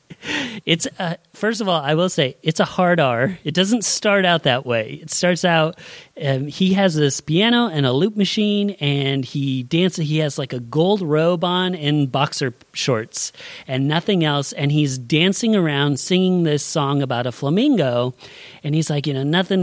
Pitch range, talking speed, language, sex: 140-180 Hz, 195 wpm, English, male